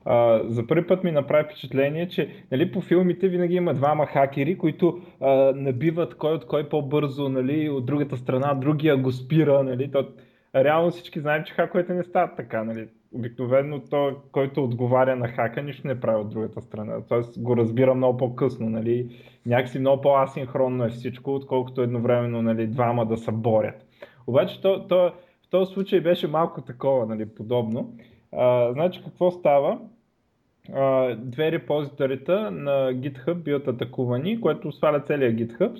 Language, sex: Bulgarian, male